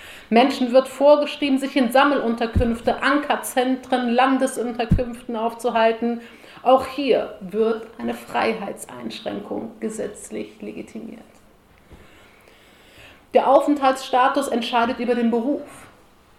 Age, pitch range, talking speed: 30-49, 200-250 Hz, 80 wpm